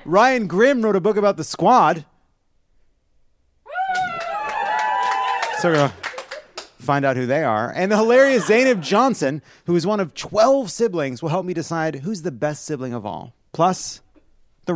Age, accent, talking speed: 30-49, American, 165 wpm